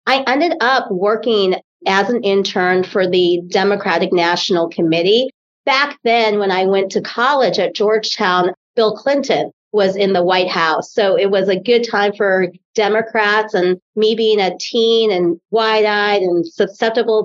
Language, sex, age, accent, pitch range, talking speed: English, female, 40-59, American, 185-230 Hz, 155 wpm